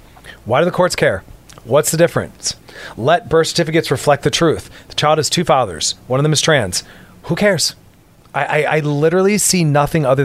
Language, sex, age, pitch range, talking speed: English, male, 30-49, 125-160 Hz, 195 wpm